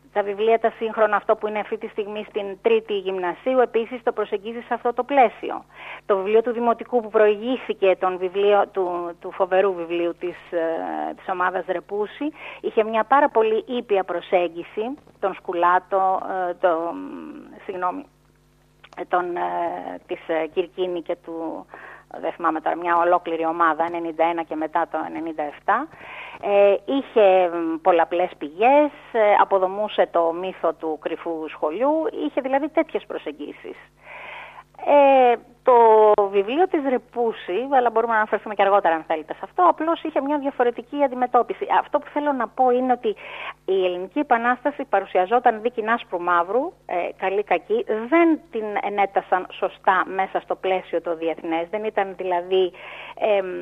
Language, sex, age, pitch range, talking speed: Greek, female, 30-49, 175-240 Hz, 135 wpm